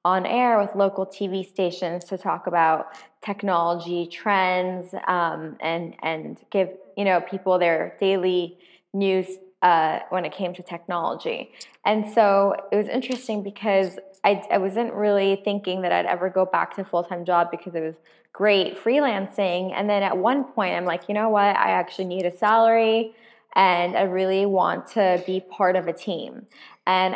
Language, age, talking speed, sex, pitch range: English, 20-39, 170 wpm, female, 180-215 Hz